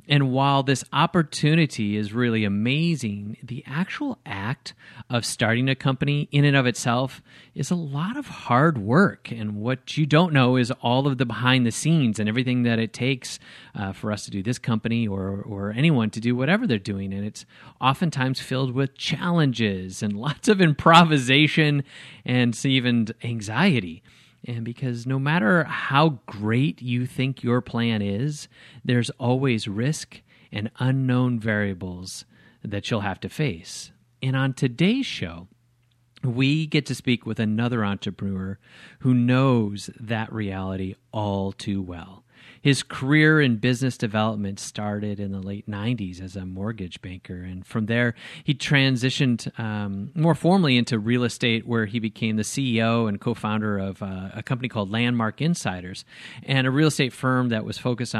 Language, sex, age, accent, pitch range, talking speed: English, male, 30-49, American, 105-140 Hz, 160 wpm